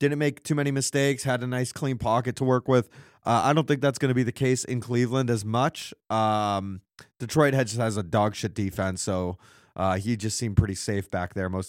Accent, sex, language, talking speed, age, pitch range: American, male, English, 230 wpm, 20-39, 100-135 Hz